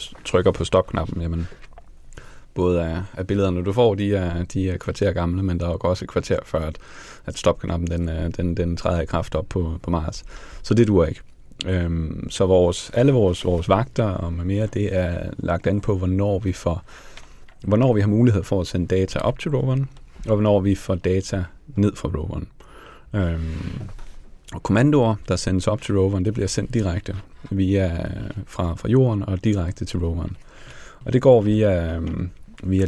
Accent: native